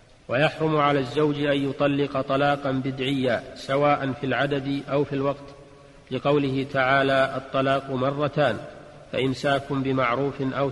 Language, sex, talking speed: Arabic, male, 110 wpm